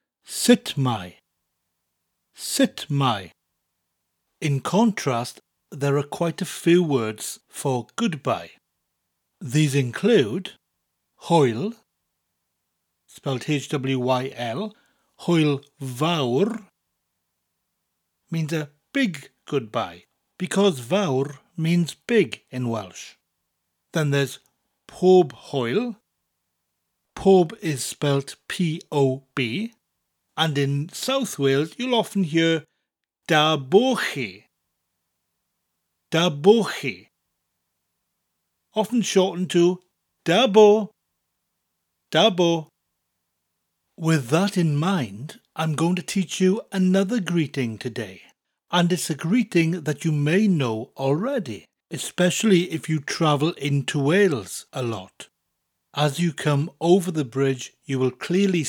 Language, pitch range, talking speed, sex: English, 110-180 Hz, 100 wpm, male